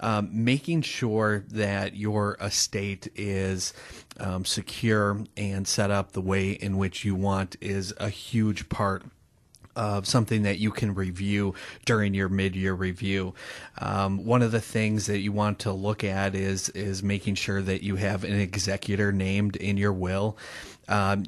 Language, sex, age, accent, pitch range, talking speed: English, male, 30-49, American, 100-115 Hz, 160 wpm